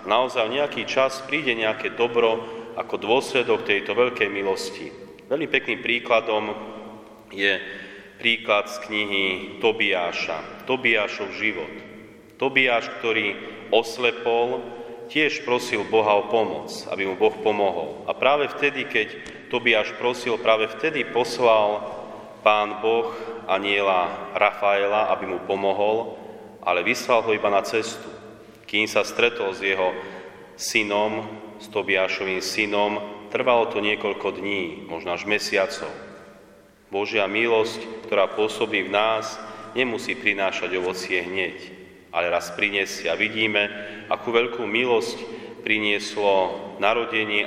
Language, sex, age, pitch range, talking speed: Slovak, male, 30-49, 100-115 Hz, 115 wpm